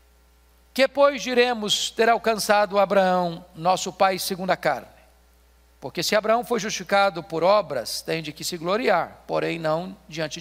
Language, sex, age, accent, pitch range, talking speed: Portuguese, male, 50-69, Brazilian, 160-215 Hz, 150 wpm